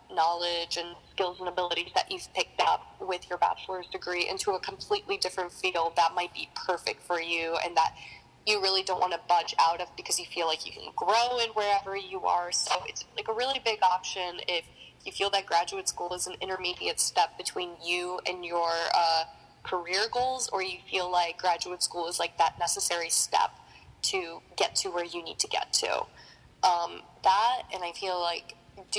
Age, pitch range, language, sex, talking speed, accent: 10-29, 170-200 Hz, English, female, 200 wpm, American